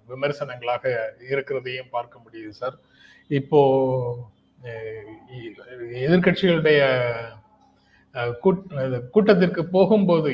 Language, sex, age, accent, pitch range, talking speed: Tamil, male, 30-49, native, 130-160 Hz, 60 wpm